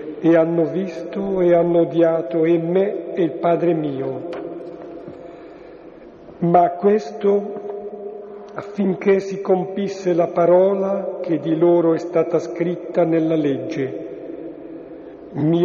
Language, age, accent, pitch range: Italian, 50-69, native, 155-180 Hz